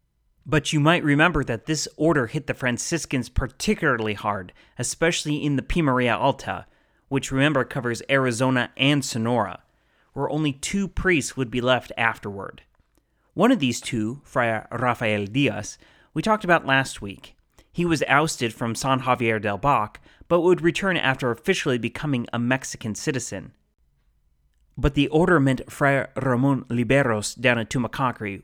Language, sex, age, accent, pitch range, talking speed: English, male, 30-49, American, 110-145 Hz, 150 wpm